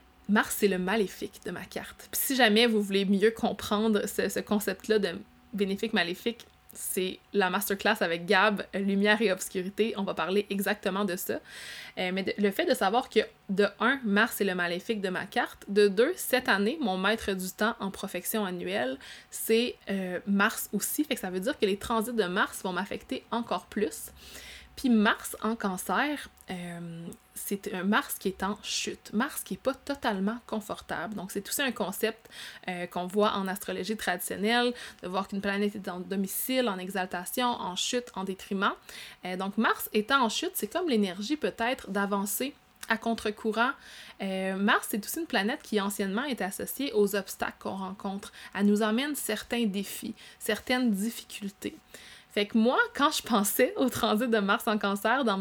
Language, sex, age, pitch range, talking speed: French, female, 20-39, 195-230 Hz, 180 wpm